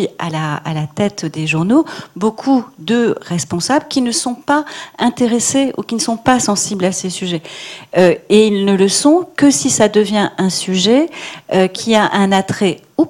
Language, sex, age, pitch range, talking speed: French, female, 40-59, 175-230 Hz, 190 wpm